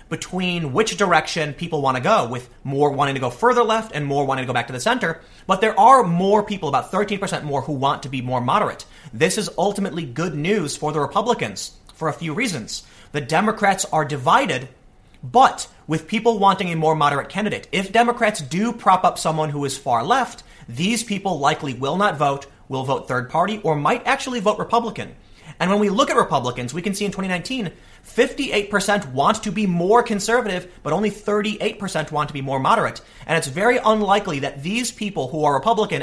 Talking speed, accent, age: 200 wpm, American, 30-49